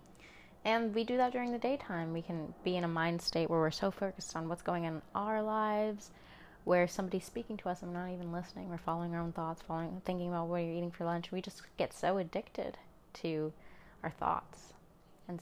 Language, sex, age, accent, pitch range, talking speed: English, female, 20-39, American, 170-195 Hz, 220 wpm